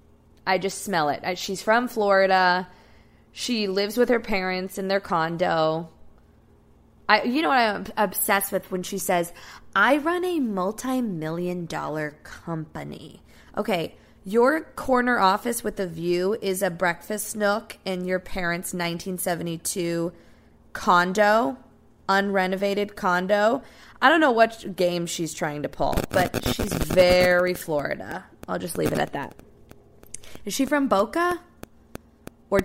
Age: 20-39